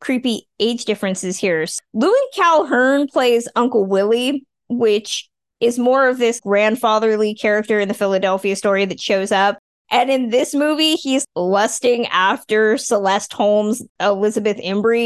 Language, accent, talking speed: English, American, 135 wpm